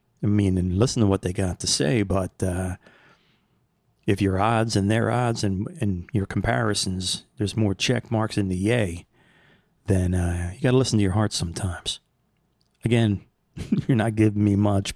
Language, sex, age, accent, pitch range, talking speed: English, male, 30-49, American, 95-120 Hz, 180 wpm